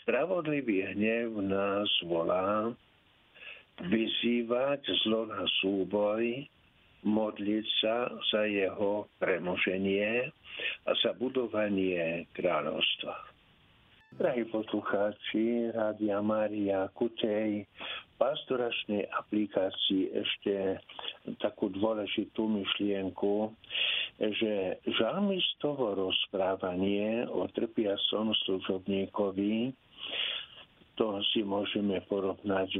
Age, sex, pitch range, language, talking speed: 60-79, male, 95-115 Hz, Slovak, 70 wpm